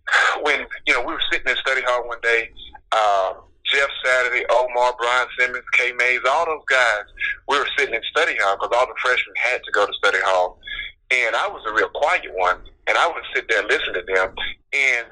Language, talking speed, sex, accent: English, 220 wpm, male, American